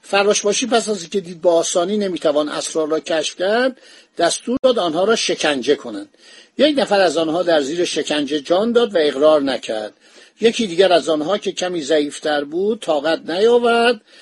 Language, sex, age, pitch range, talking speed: Persian, male, 50-69, 165-215 Hz, 170 wpm